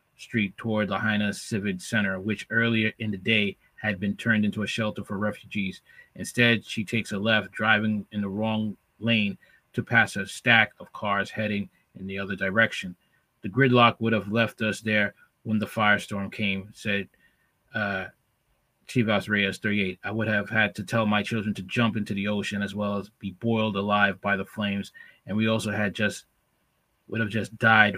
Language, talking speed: English, 185 wpm